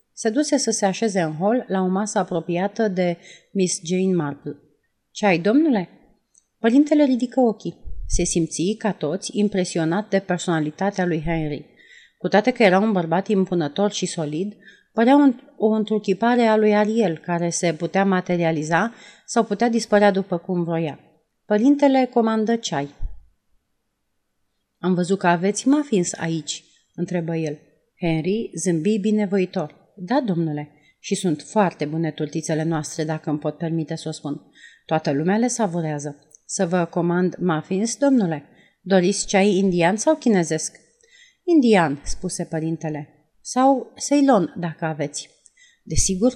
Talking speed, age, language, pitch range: 140 wpm, 30-49, Romanian, 165-220 Hz